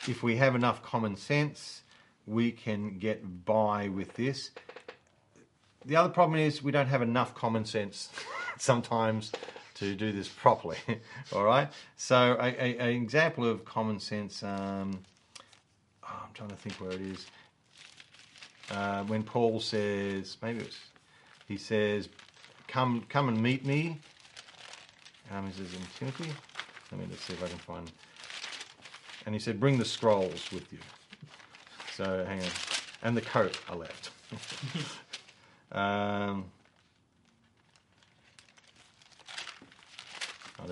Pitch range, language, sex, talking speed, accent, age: 100-125 Hz, English, male, 130 wpm, Australian, 40-59